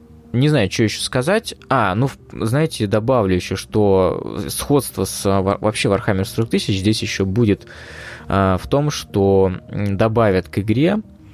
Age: 20-39